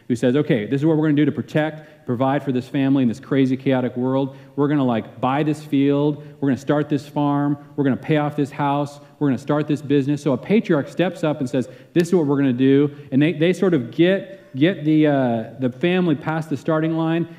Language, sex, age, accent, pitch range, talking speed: English, male, 40-59, American, 125-155 Hz, 260 wpm